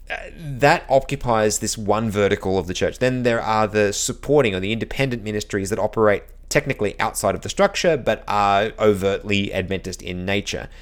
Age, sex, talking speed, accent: 30-49, male, 165 wpm, Australian